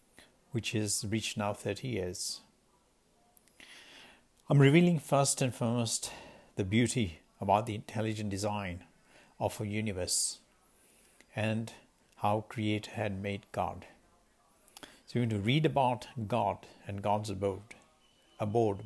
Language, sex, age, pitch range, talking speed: English, male, 60-79, 105-120 Hz, 120 wpm